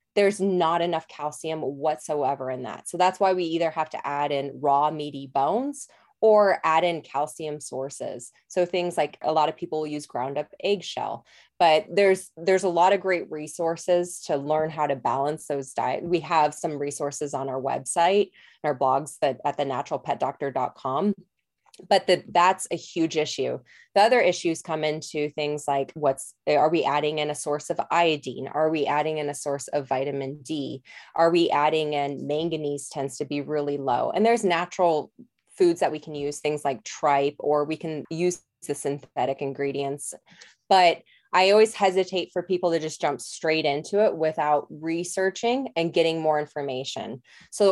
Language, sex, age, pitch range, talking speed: English, female, 20-39, 145-180 Hz, 175 wpm